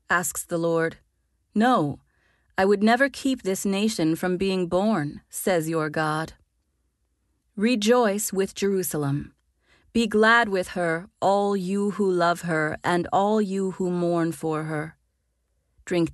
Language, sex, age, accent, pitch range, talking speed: English, female, 30-49, American, 155-200 Hz, 135 wpm